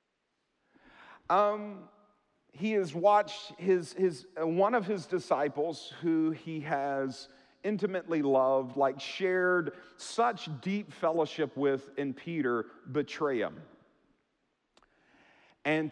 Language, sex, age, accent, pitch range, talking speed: English, male, 40-59, American, 145-210 Hz, 100 wpm